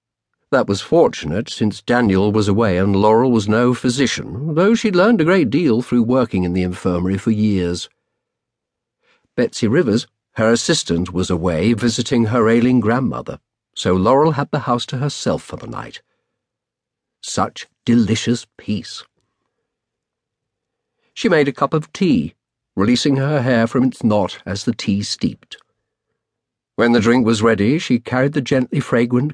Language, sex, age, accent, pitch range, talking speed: English, male, 50-69, British, 100-125 Hz, 150 wpm